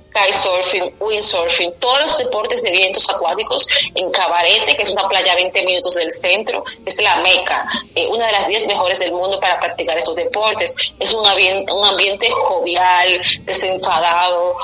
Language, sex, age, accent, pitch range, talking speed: Spanish, female, 30-49, Venezuelan, 185-255 Hz, 170 wpm